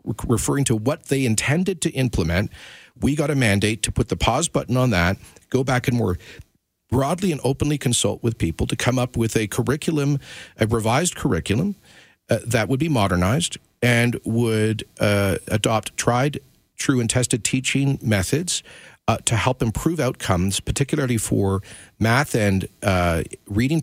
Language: English